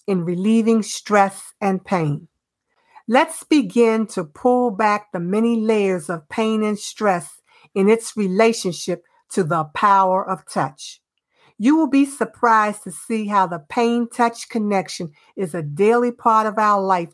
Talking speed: 145 wpm